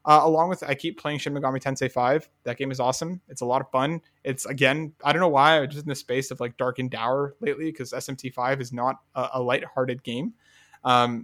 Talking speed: 245 wpm